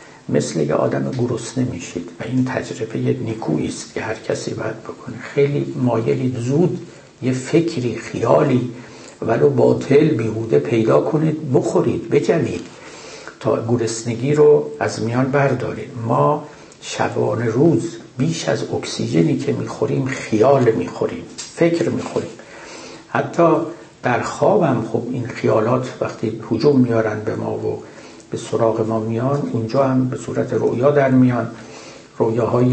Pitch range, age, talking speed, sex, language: 110-140 Hz, 60-79, 130 wpm, male, Persian